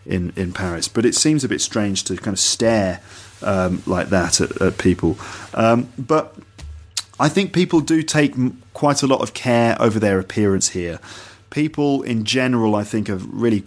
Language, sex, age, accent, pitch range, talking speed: English, male, 30-49, British, 100-125 Hz, 190 wpm